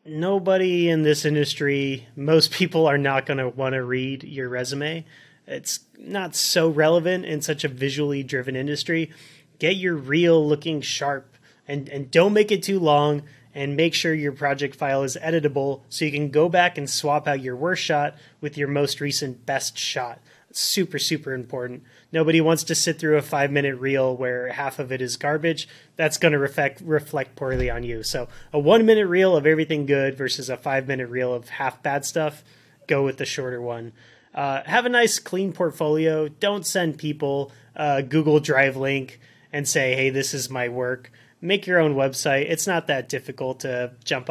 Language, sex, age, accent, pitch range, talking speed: English, male, 30-49, American, 135-165 Hz, 185 wpm